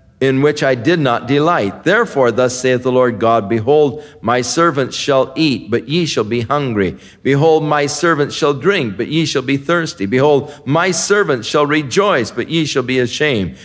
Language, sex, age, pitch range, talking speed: English, male, 50-69, 105-155 Hz, 185 wpm